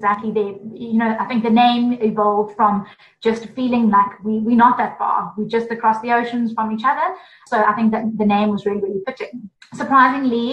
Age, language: 20-39, English